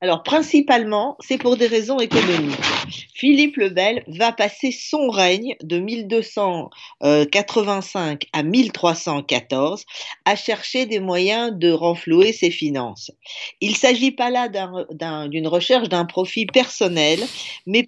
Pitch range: 175-245 Hz